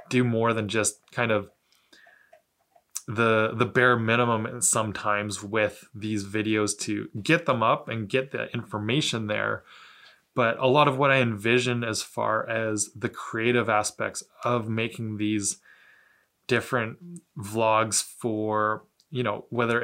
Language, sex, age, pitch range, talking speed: English, male, 20-39, 110-125 Hz, 135 wpm